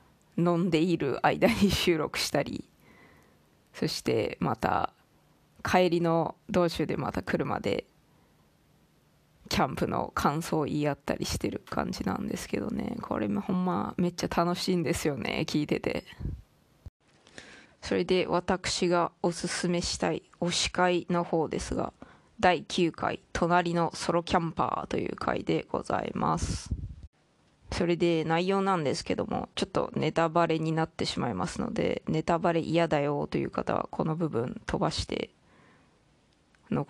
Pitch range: 155-175 Hz